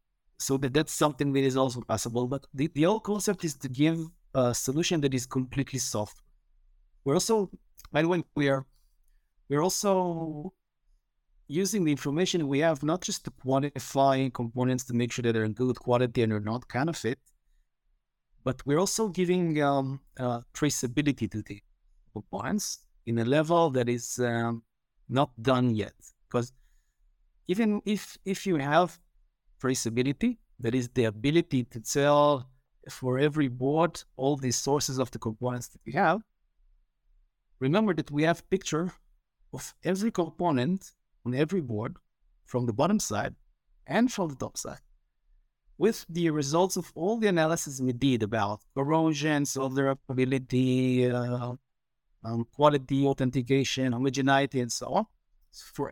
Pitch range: 120-160 Hz